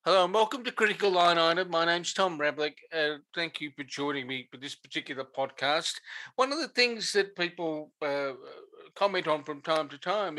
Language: English